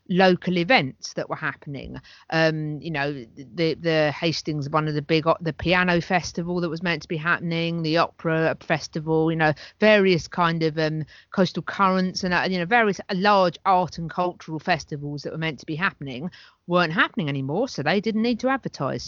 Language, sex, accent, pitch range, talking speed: English, female, British, 155-195 Hz, 190 wpm